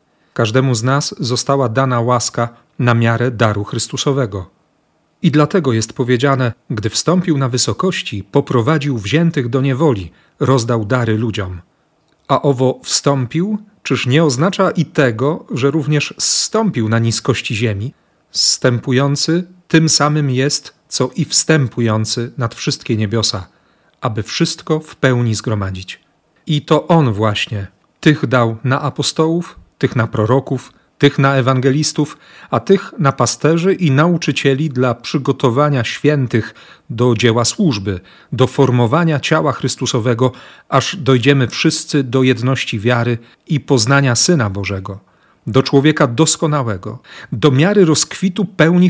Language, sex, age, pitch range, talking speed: Polish, male, 40-59, 120-150 Hz, 125 wpm